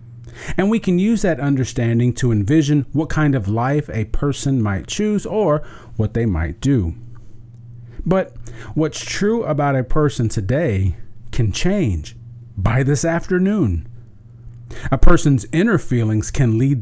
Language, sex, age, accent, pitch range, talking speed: English, male, 40-59, American, 110-145 Hz, 140 wpm